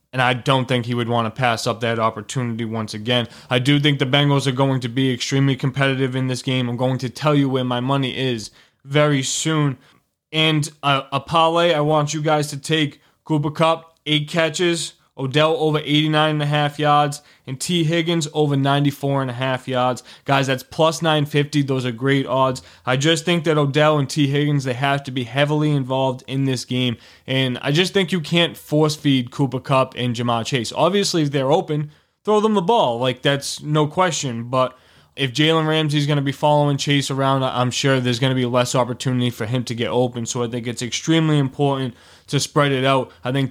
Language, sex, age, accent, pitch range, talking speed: English, male, 20-39, American, 130-150 Hz, 205 wpm